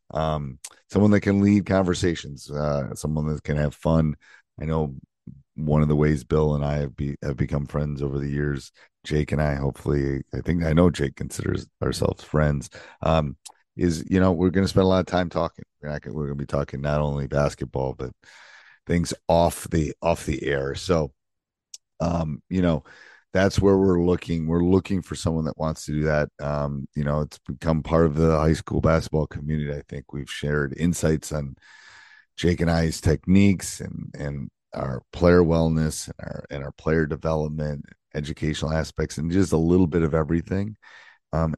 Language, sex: English, male